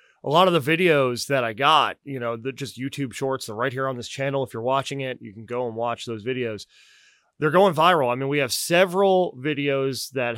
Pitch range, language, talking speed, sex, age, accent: 115-155 Hz, English, 235 wpm, male, 30-49, American